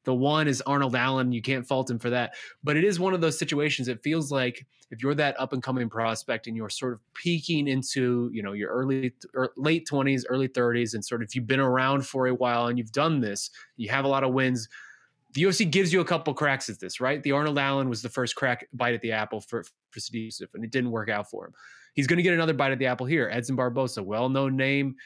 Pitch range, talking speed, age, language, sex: 120-140 Hz, 255 wpm, 20-39, English, male